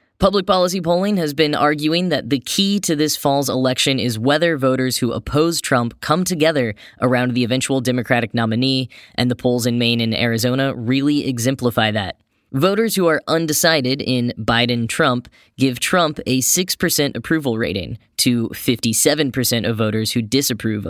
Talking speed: 155 wpm